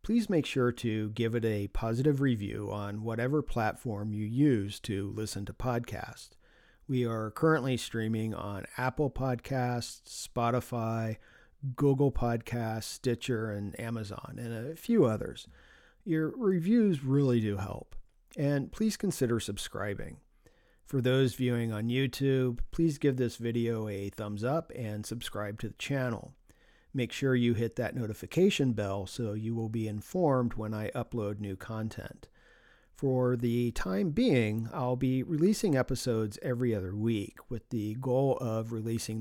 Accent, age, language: American, 50-69, English